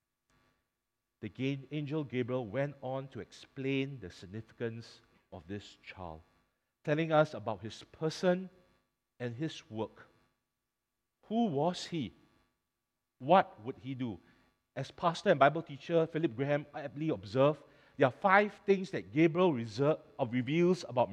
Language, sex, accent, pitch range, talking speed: English, male, Malaysian, 120-180 Hz, 125 wpm